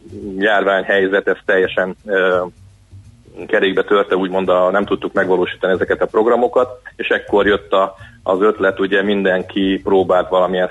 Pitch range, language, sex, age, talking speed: 90-100 Hz, Hungarian, male, 30-49, 140 wpm